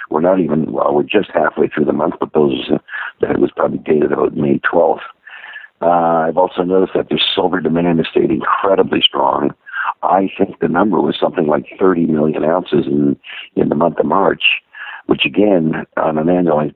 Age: 60-79